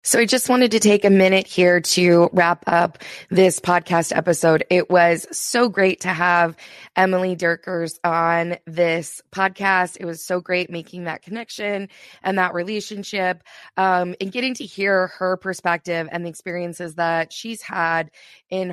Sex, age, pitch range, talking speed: female, 20-39, 175-195 Hz, 160 wpm